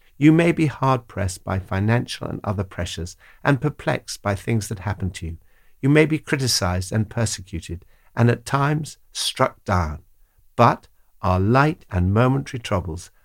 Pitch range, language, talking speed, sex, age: 90-120 Hz, English, 155 wpm, male, 60-79